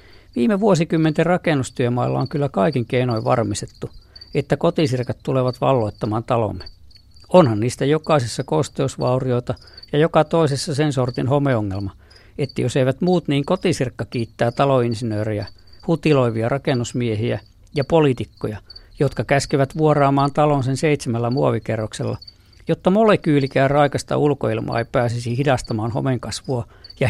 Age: 50-69